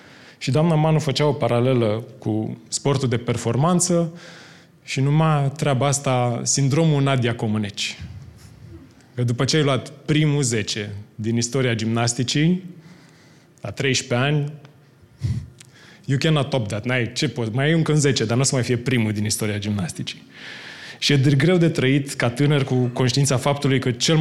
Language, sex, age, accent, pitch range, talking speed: Romanian, male, 20-39, native, 120-150 Hz, 150 wpm